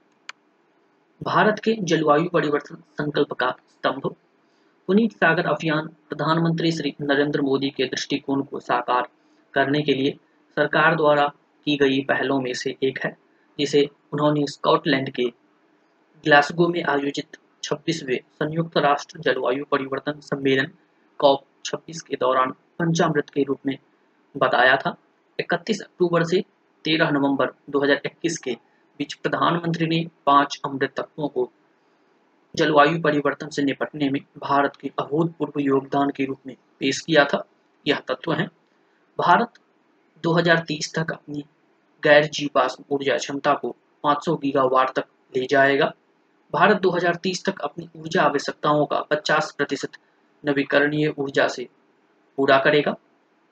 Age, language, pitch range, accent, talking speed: 30-49, Hindi, 140-165 Hz, native, 110 wpm